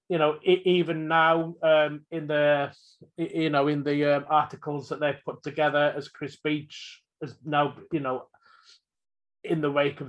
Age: 30-49